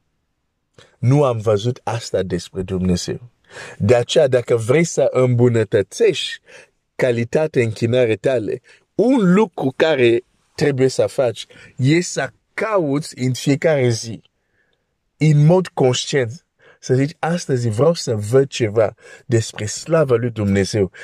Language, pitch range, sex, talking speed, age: Romanian, 105-150 Hz, male, 115 wpm, 50-69